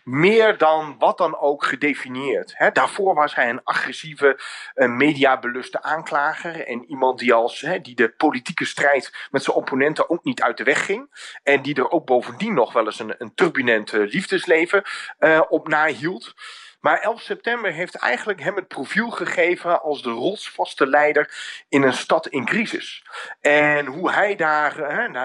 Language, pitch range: Dutch, 135-195 Hz